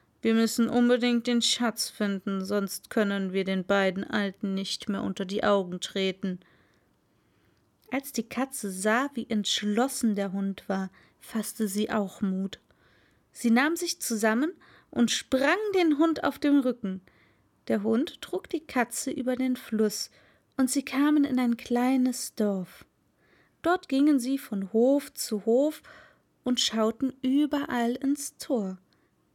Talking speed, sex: 140 wpm, female